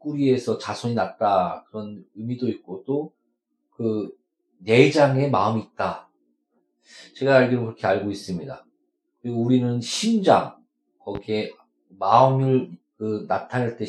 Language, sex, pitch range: Korean, male, 100-155 Hz